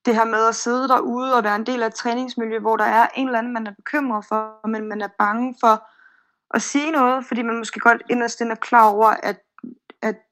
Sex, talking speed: female, 240 wpm